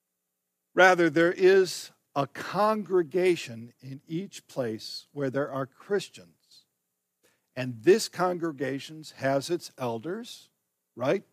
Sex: male